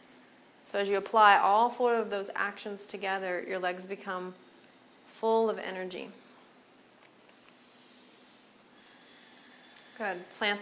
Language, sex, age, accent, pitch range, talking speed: English, female, 30-49, American, 195-225 Hz, 100 wpm